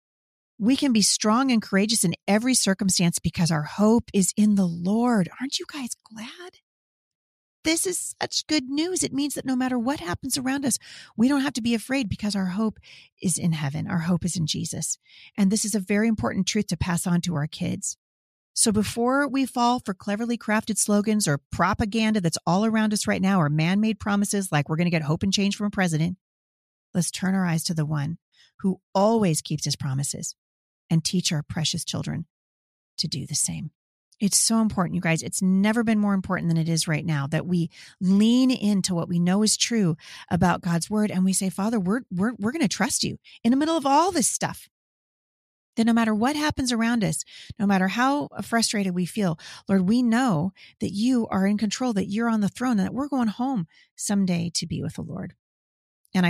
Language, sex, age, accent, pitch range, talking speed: English, female, 40-59, American, 170-230 Hz, 210 wpm